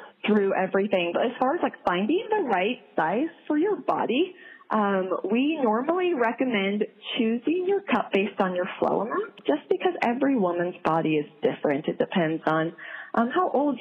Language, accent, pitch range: English, American, 190-260 Hz